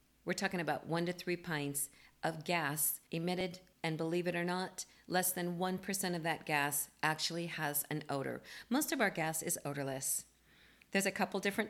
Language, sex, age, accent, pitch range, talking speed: English, female, 50-69, American, 155-185 Hz, 180 wpm